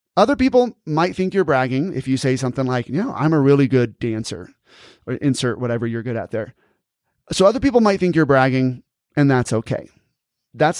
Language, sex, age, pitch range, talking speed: English, male, 30-49, 125-160 Hz, 200 wpm